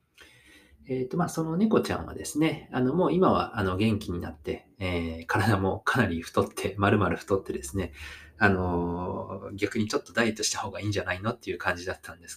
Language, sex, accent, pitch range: Japanese, male, native, 95-125 Hz